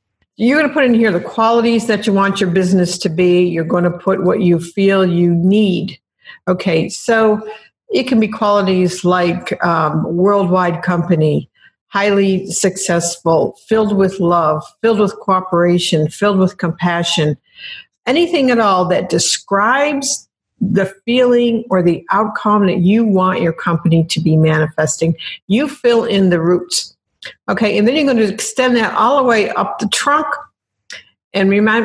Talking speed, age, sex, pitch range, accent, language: 155 wpm, 50-69, female, 175-220 Hz, American, English